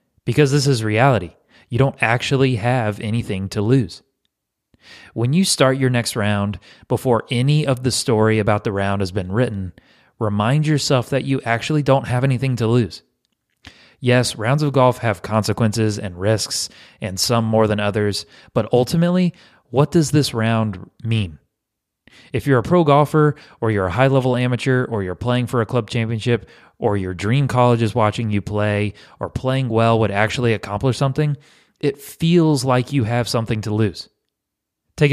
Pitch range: 105-135 Hz